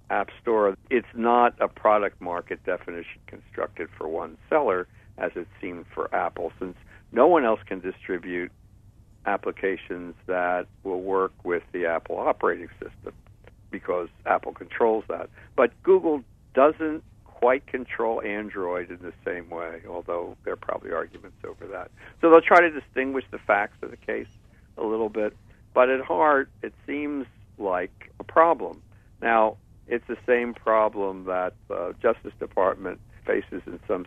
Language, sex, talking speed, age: English, male, 150 wpm, 60-79